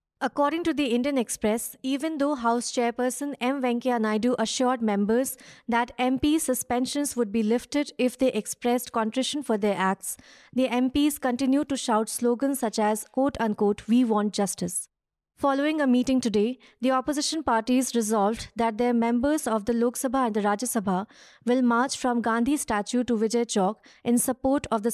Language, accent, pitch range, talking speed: English, Indian, 225-270 Hz, 170 wpm